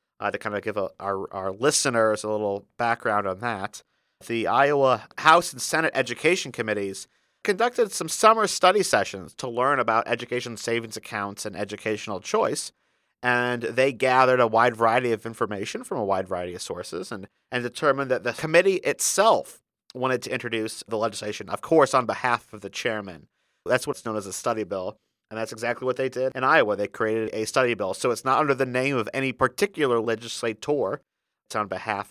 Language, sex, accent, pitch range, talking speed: English, male, American, 110-130 Hz, 185 wpm